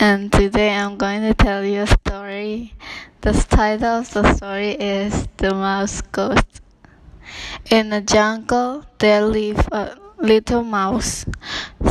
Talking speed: 130 wpm